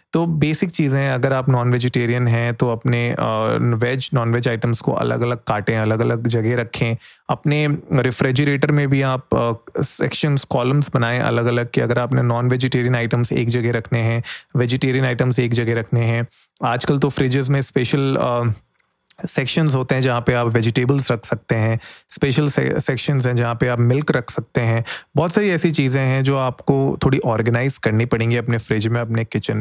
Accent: native